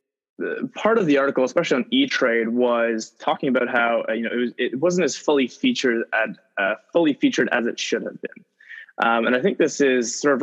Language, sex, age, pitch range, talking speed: English, male, 20-39, 120-140 Hz, 215 wpm